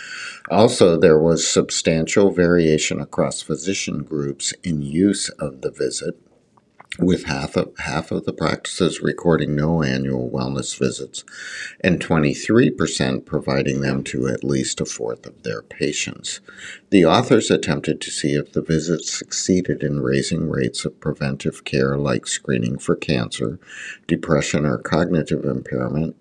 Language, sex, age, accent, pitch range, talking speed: English, male, 50-69, American, 70-85 Hz, 135 wpm